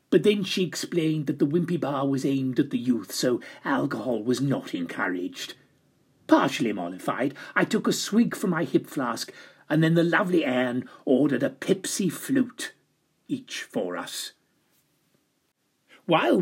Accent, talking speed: British, 150 wpm